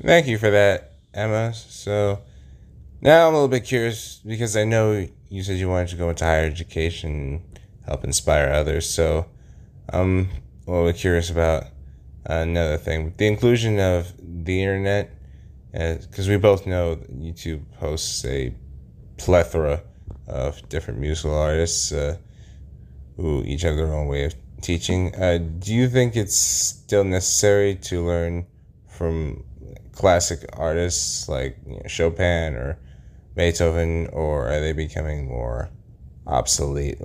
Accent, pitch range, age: American, 75-95 Hz, 10-29